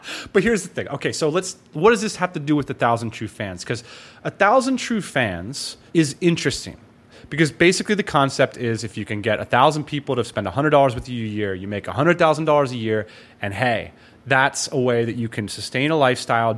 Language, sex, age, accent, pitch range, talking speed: English, male, 30-49, American, 115-155 Hz, 215 wpm